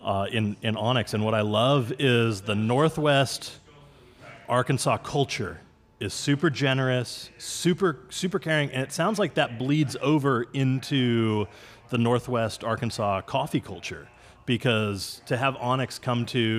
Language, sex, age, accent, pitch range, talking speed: English, male, 30-49, American, 110-140 Hz, 135 wpm